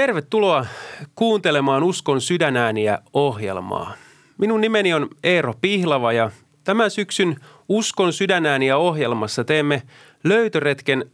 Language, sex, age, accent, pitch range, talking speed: Finnish, male, 30-49, native, 125-180 Hz, 95 wpm